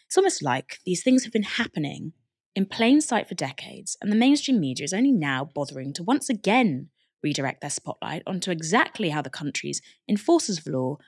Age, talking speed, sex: 20-39, 190 wpm, female